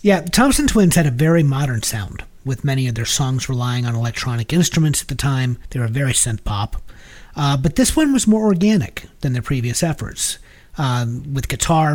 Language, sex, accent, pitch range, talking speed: English, male, American, 120-155 Hz, 200 wpm